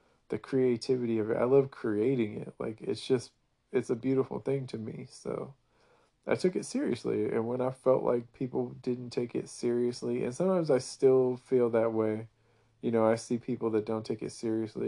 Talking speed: 200 wpm